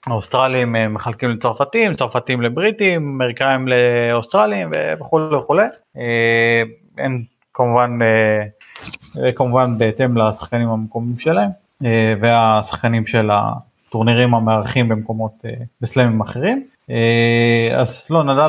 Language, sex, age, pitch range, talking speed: Hebrew, male, 30-49, 115-135 Hz, 95 wpm